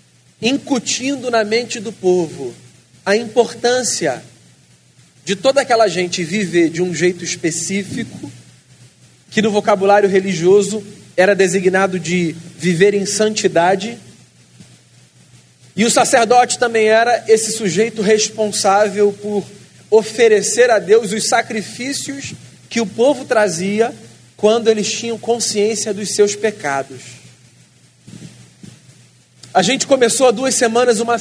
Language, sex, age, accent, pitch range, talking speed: Portuguese, male, 40-59, Brazilian, 195-235 Hz, 110 wpm